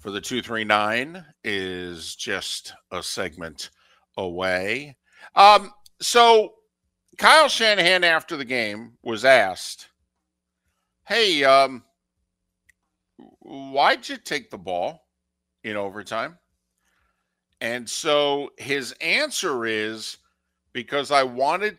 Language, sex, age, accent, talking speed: English, male, 50-69, American, 100 wpm